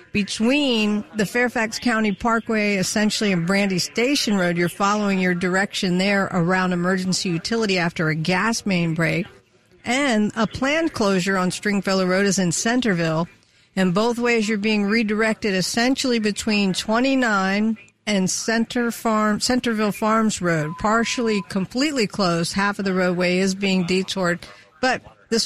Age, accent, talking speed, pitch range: 50-69, American, 140 wpm, 185-240 Hz